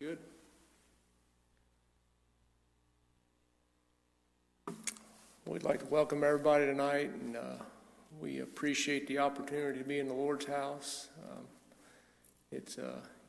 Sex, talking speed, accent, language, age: male, 100 wpm, American, English, 50-69